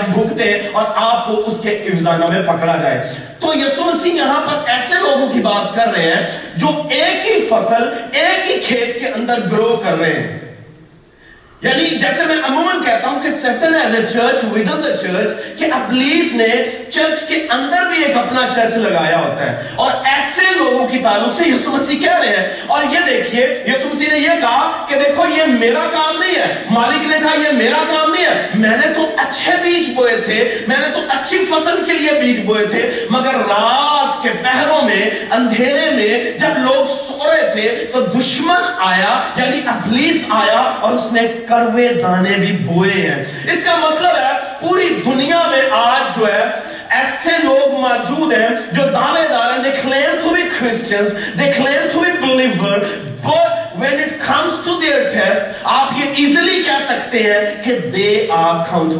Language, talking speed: Urdu, 125 wpm